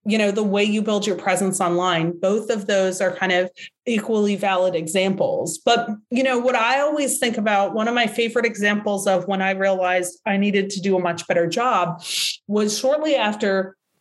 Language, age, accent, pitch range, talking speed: English, 30-49, American, 190-250 Hz, 195 wpm